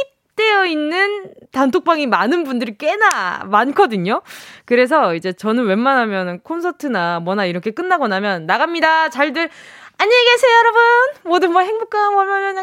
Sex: female